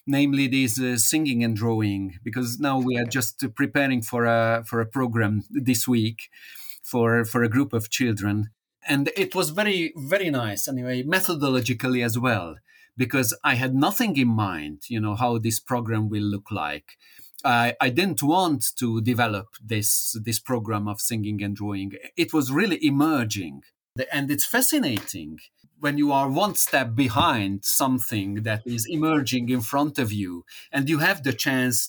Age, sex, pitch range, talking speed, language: 40-59, male, 115-140 Hz, 165 wpm, English